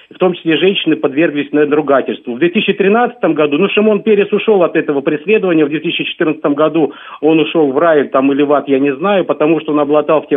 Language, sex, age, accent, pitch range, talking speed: Russian, male, 50-69, native, 145-180 Hz, 210 wpm